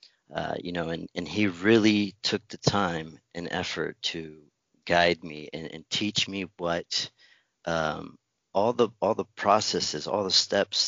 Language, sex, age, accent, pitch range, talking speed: English, male, 40-59, American, 80-90 Hz, 160 wpm